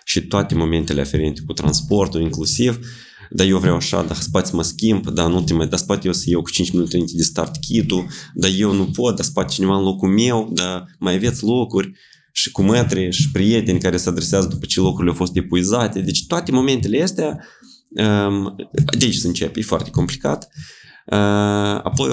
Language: Romanian